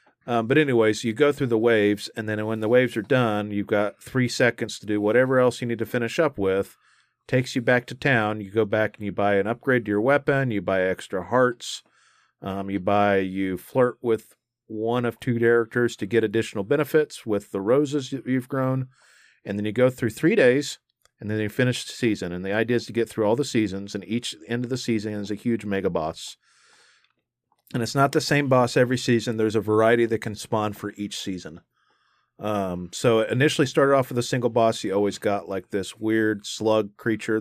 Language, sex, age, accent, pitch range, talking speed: English, male, 40-59, American, 100-120 Hz, 225 wpm